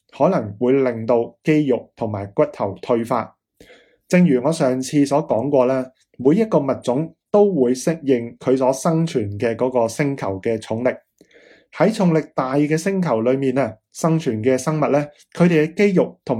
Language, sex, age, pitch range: Chinese, male, 20-39, 120-155 Hz